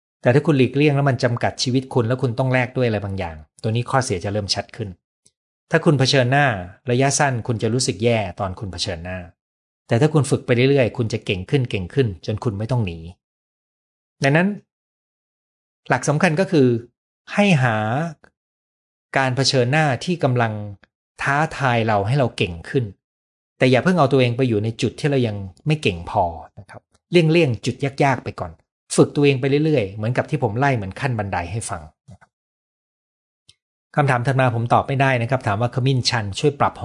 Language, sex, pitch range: Thai, male, 105-135 Hz